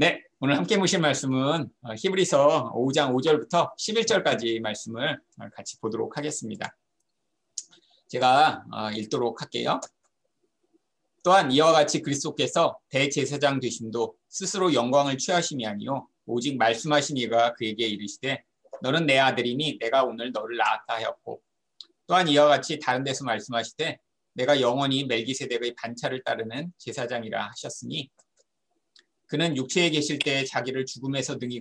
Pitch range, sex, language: 120-155 Hz, male, Korean